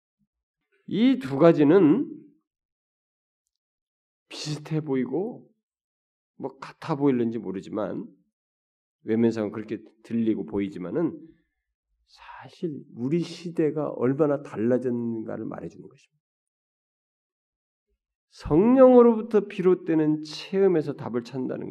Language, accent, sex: Korean, native, male